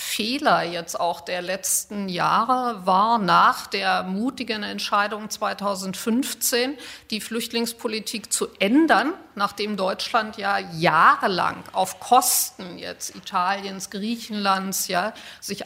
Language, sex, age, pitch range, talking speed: German, female, 50-69, 210-255 Hz, 105 wpm